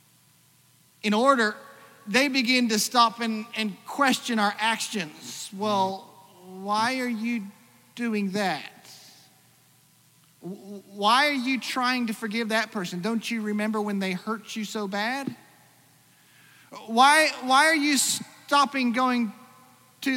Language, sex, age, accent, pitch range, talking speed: English, male, 40-59, American, 210-275 Hz, 120 wpm